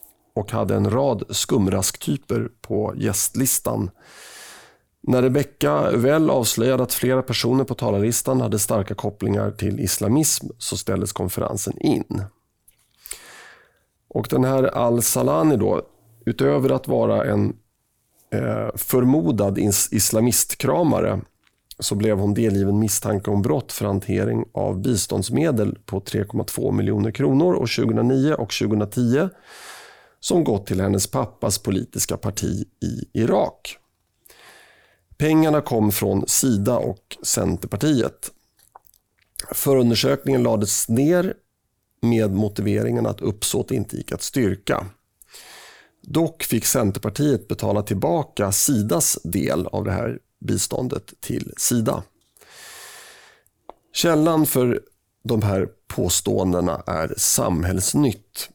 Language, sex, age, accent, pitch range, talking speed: Swedish, male, 30-49, native, 100-130 Hz, 105 wpm